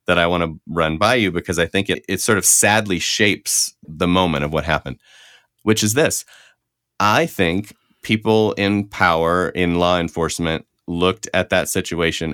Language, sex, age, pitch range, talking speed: English, male, 30-49, 80-95 Hz, 175 wpm